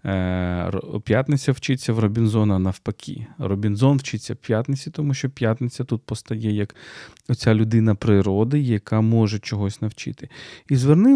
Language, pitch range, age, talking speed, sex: Ukrainian, 105-130 Hz, 40-59, 130 wpm, male